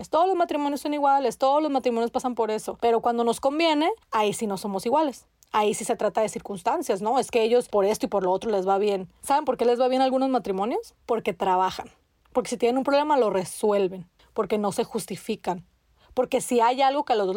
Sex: female